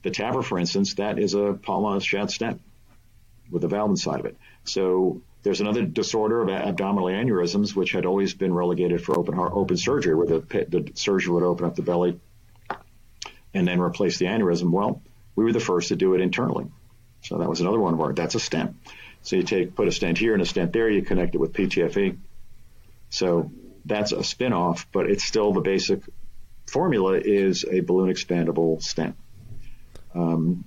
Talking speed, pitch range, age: 195 wpm, 85-100 Hz, 50-69